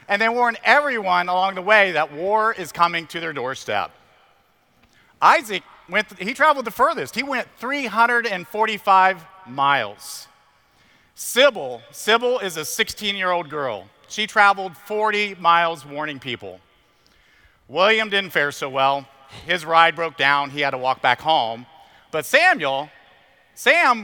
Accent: American